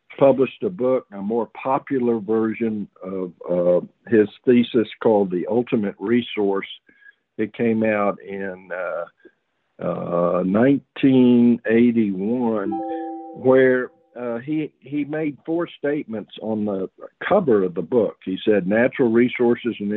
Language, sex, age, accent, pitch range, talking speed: English, male, 50-69, American, 105-125 Hz, 120 wpm